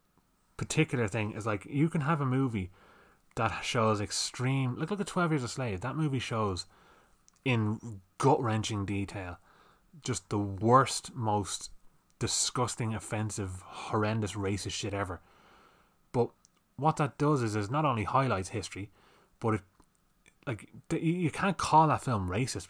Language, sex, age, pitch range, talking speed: English, male, 20-39, 100-135 Hz, 145 wpm